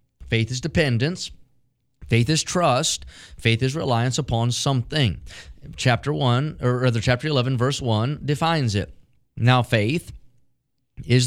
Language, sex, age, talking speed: English, male, 30-49, 130 wpm